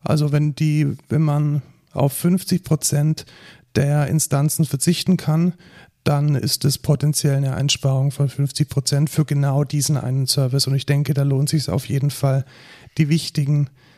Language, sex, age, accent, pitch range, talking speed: German, male, 40-59, German, 135-150 Hz, 155 wpm